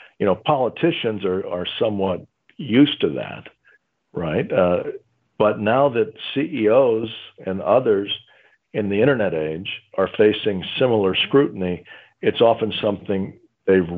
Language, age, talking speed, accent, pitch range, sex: English, 50-69, 125 wpm, American, 95-115 Hz, male